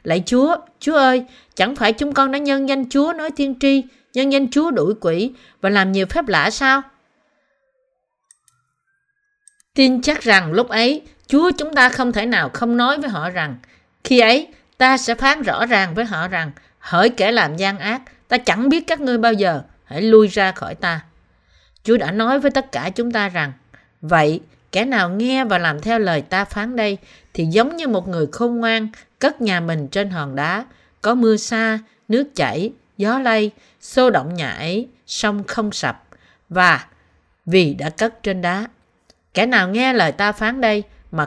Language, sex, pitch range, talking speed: Vietnamese, female, 175-255 Hz, 190 wpm